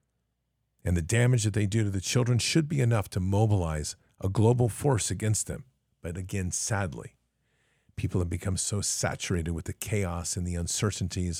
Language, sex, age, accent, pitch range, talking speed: English, male, 50-69, American, 85-110 Hz, 175 wpm